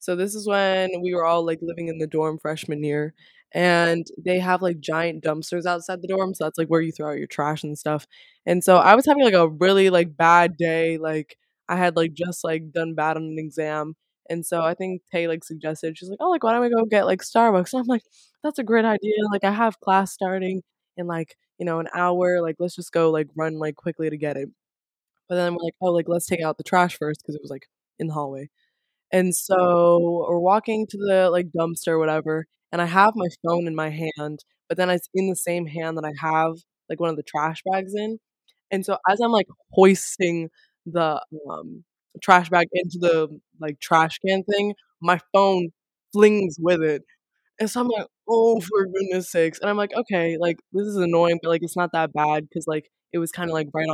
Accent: American